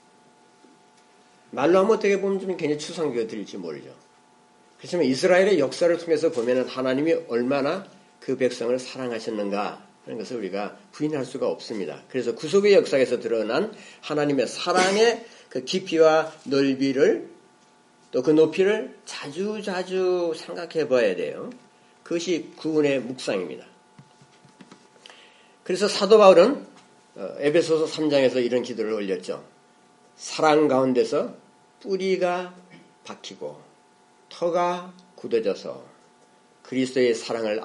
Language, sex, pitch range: Korean, male, 135-200 Hz